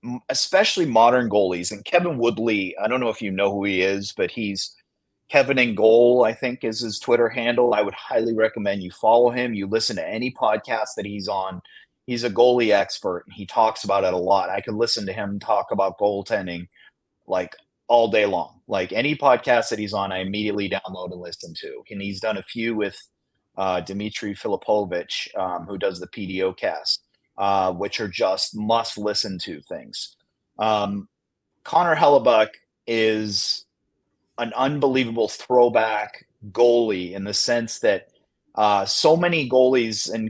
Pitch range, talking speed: 100-120 Hz, 170 wpm